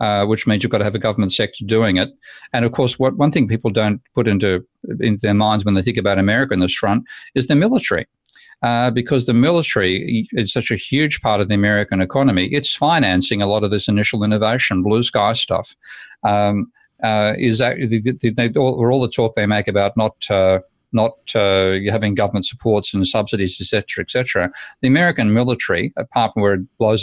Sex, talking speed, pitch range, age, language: male, 215 wpm, 105-125 Hz, 50-69, English